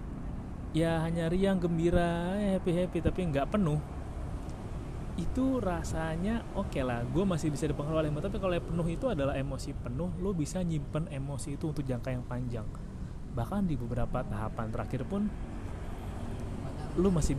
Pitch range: 130-175 Hz